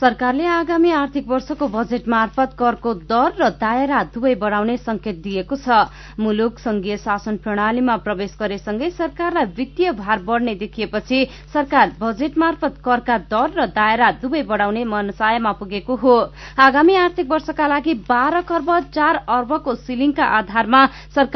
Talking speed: 115 wpm